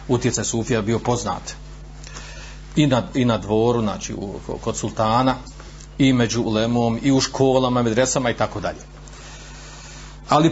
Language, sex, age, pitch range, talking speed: Croatian, male, 40-59, 115-155 Hz, 135 wpm